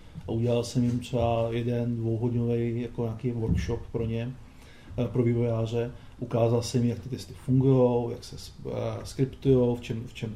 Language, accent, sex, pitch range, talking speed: Czech, native, male, 120-135 Hz, 150 wpm